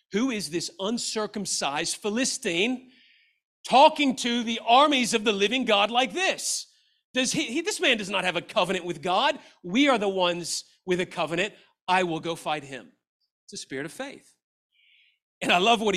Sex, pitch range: male, 155-205 Hz